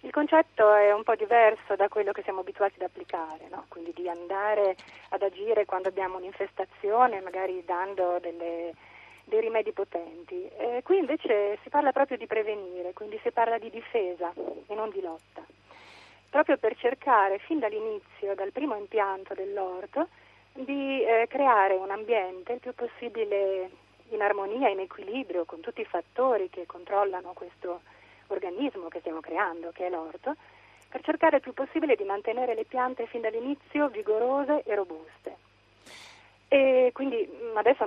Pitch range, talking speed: 180-235 Hz, 155 wpm